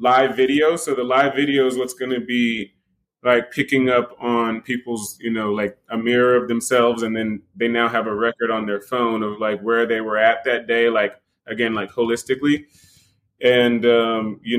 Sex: male